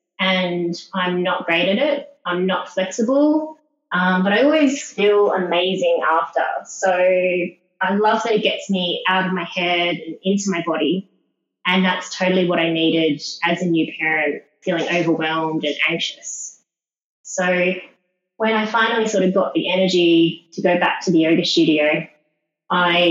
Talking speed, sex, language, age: 160 wpm, female, English, 20-39